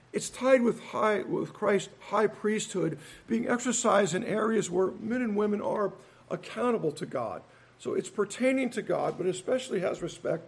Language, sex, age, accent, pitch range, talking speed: English, male, 50-69, American, 195-230 Hz, 160 wpm